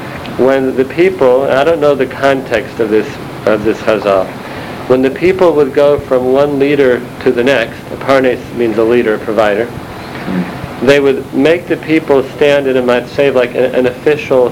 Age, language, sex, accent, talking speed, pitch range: 50-69, English, male, American, 190 wpm, 120-140 Hz